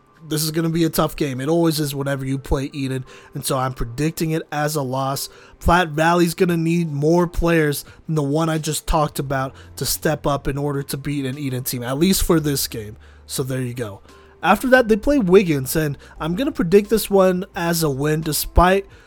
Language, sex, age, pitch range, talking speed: English, male, 20-39, 140-175 Hz, 225 wpm